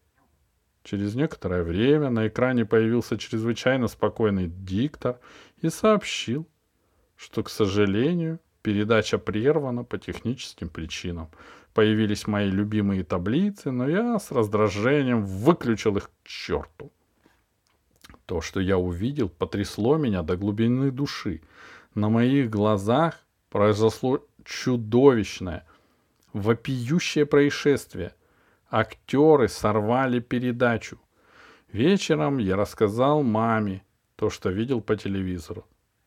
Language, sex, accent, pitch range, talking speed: Russian, male, native, 105-155 Hz, 100 wpm